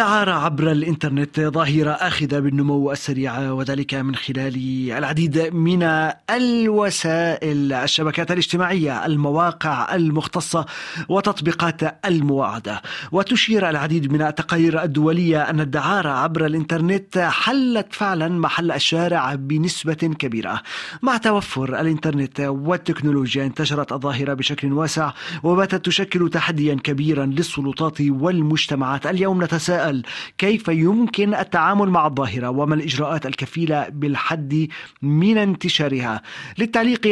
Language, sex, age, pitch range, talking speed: Arabic, male, 30-49, 145-180 Hz, 100 wpm